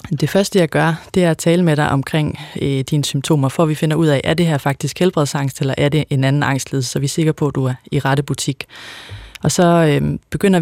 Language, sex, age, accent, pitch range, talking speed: Danish, female, 30-49, native, 140-165 Hz, 260 wpm